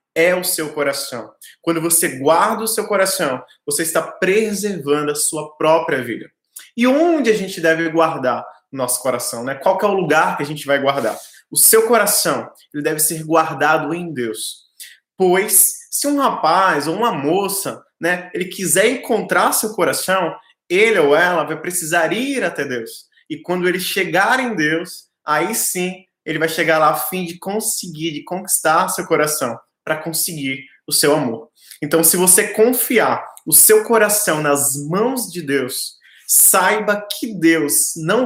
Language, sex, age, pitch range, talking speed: Portuguese, male, 20-39, 155-200 Hz, 170 wpm